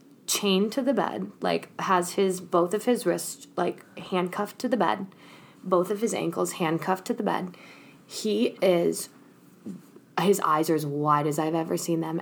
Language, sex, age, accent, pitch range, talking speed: English, female, 20-39, American, 165-190 Hz, 175 wpm